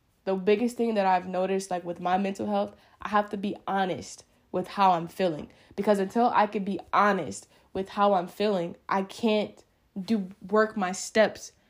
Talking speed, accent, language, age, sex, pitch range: 185 wpm, American, English, 10-29, female, 180-220 Hz